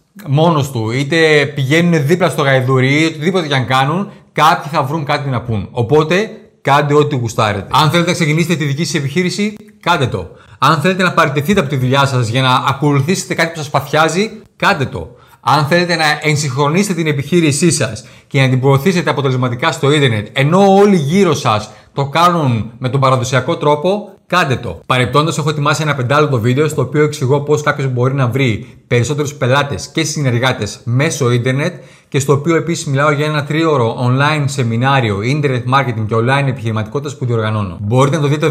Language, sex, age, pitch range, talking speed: Greek, male, 30-49, 125-160 Hz, 180 wpm